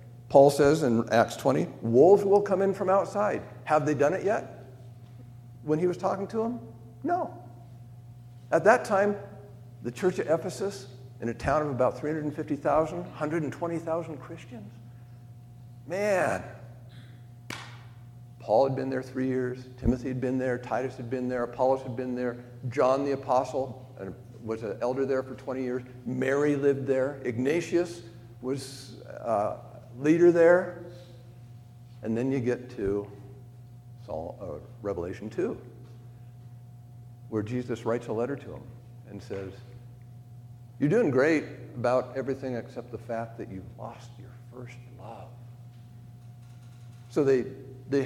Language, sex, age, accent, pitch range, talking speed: English, male, 50-69, American, 120-140 Hz, 135 wpm